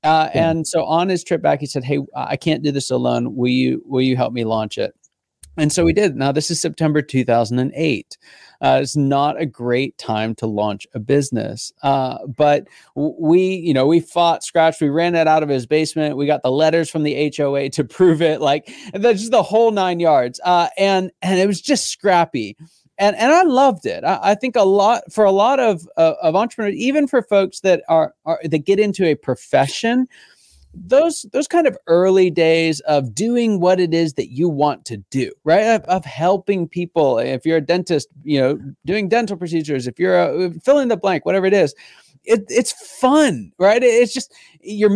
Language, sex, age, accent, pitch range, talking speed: English, male, 30-49, American, 150-210 Hz, 210 wpm